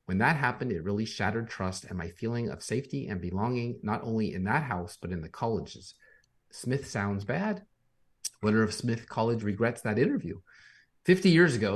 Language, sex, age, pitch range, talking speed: English, male, 30-49, 95-125 Hz, 185 wpm